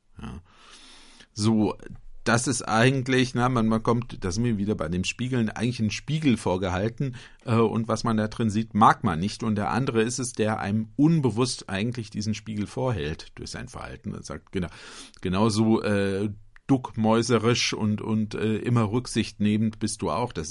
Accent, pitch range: German, 105-125 Hz